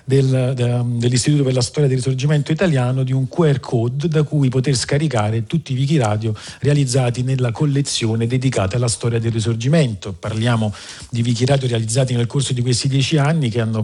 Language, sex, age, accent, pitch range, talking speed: Italian, male, 40-59, native, 115-140 Hz, 165 wpm